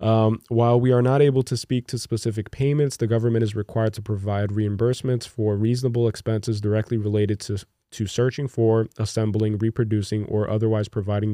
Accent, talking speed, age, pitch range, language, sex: American, 170 wpm, 20-39, 105-120 Hz, English, male